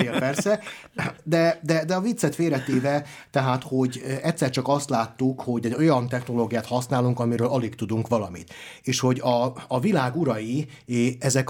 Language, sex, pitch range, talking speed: Hungarian, male, 115-145 Hz, 150 wpm